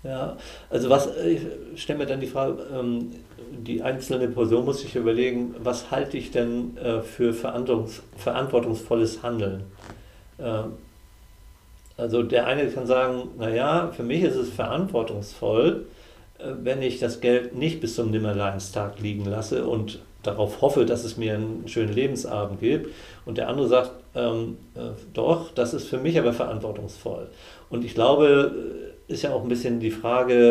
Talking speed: 150 wpm